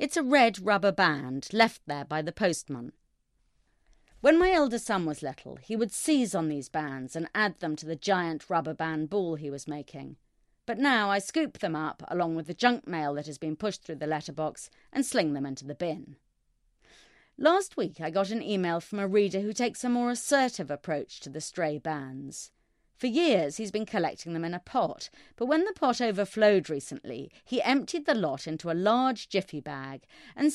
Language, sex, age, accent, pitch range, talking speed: English, female, 30-49, British, 155-225 Hz, 200 wpm